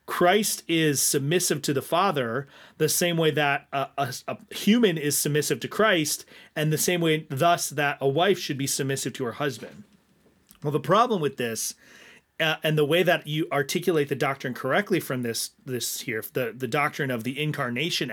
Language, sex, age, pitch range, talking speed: English, male, 30-49, 140-175 Hz, 190 wpm